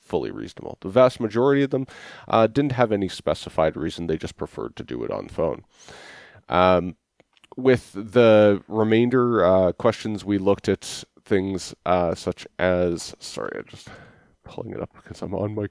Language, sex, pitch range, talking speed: English, male, 90-110 Hz, 170 wpm